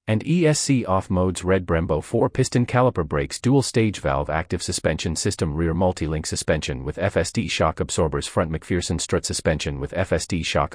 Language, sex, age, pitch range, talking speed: English, male, 40-59, 75-120 Hz, 160 wpm